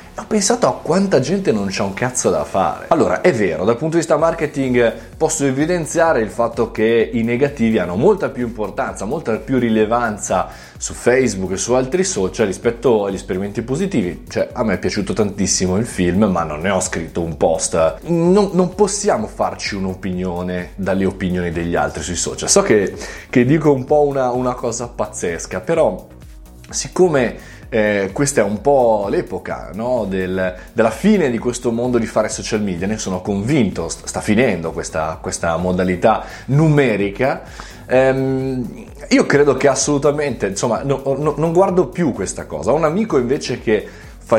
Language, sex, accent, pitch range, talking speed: Italian, male, native, 100-145 Hz, 170 wpm